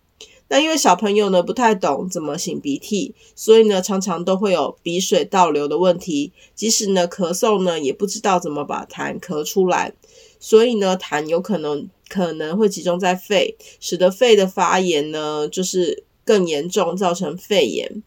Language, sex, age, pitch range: Chinese, female, 30-49, 180-220 Hz